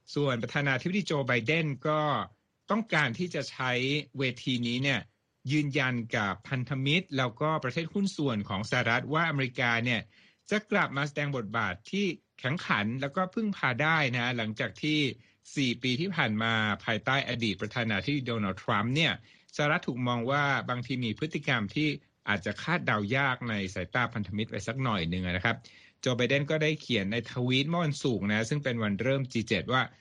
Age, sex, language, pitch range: 60-79, male, Thai, 115-150 Hz